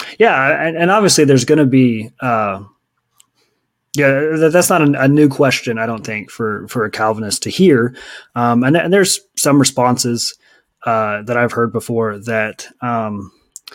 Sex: male